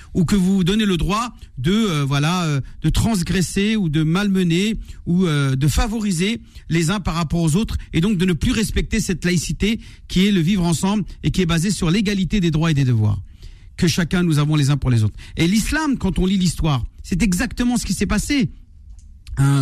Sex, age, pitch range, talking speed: male, 50-69, 140-200 Hz, 215 wpm